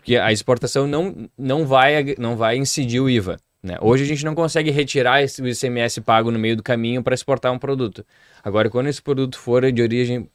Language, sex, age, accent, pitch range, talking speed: Portuguese, male, 20-39, Brazilian, 110-140 Hz, 210 wpm